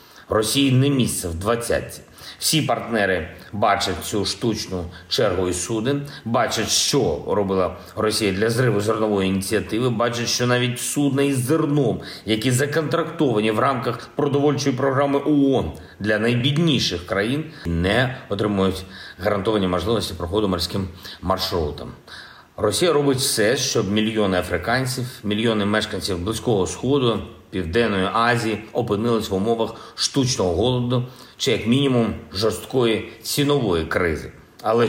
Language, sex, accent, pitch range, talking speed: Ukrainian, male, native, 95-130 Hz, 115 wpm